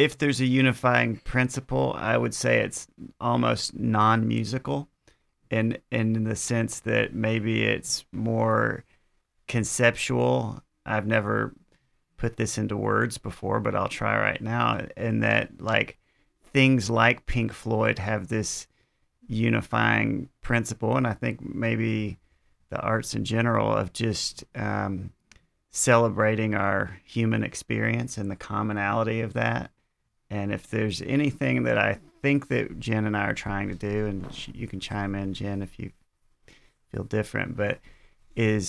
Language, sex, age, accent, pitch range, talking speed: English, male, 40-59, American, 100-115 Hz, 140 wpm